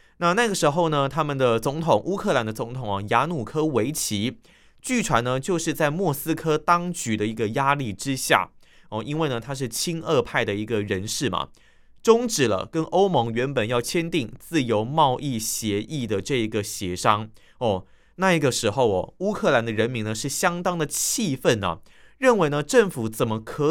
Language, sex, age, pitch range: Chinese, male, 20-39, 110-170 Hz